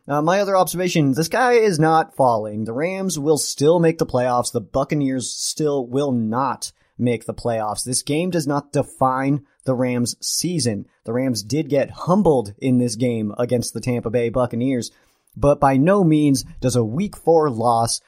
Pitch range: 120-150 Hz